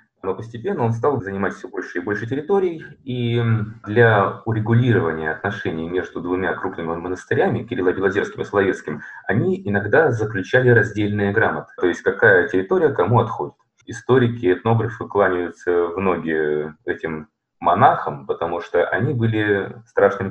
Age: 20-39